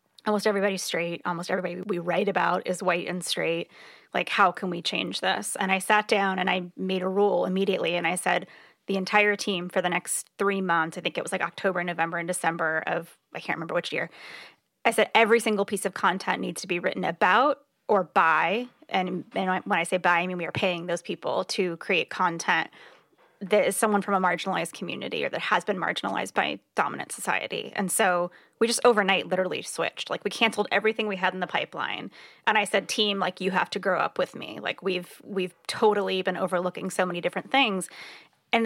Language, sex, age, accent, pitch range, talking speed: English, female, 20-39, American, 180-205 Hz, 215 wpm